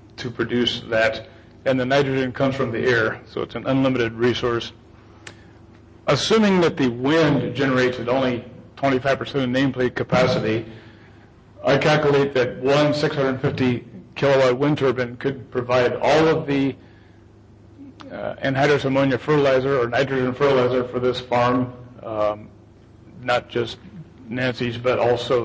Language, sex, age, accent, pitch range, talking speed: English, male, 40-59, American, 115-135 Hz, 130 wpm